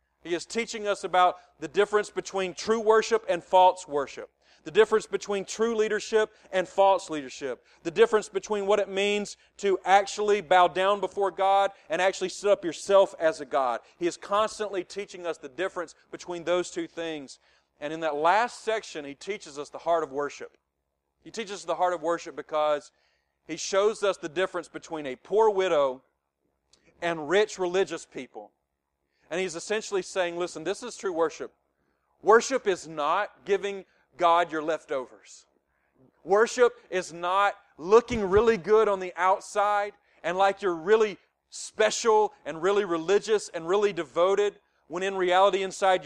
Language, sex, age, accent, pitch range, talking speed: English, male, 40-59, American, 155-200 Hz, 165 wpm